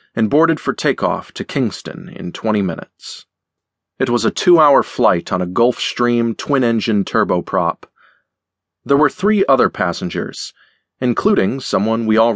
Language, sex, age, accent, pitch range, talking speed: English, male, 30-49, American, 90-115 Hz, 135 wpm